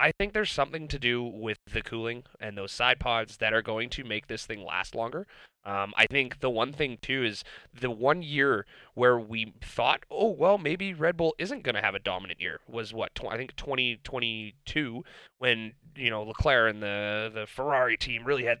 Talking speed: 210 wpm